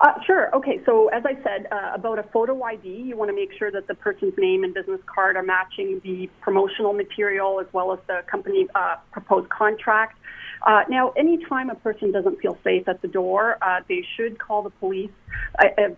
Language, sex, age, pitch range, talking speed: English, female, 40-59, 195-240 Hz, 205 wpm